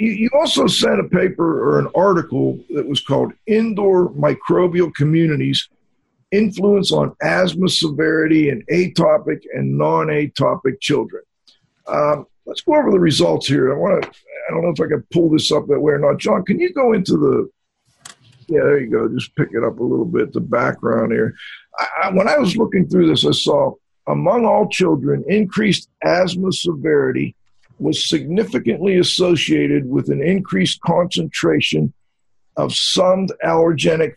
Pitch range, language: 150-185 Hz, English